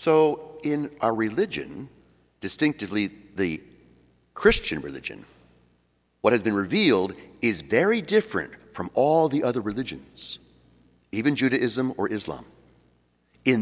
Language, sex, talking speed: English, male, 110 wpm